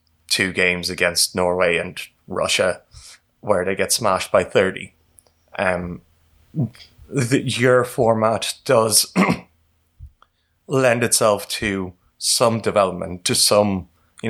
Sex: male